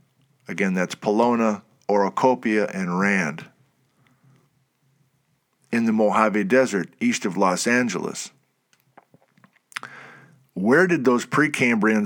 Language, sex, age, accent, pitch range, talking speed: English, male, 50-69, American, 115-160 Hz, 90 wpm